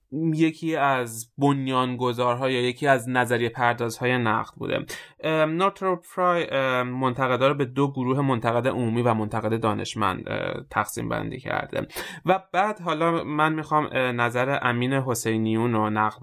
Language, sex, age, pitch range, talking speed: Persian, male, 20-39, 115-140 Hz, 120 wpm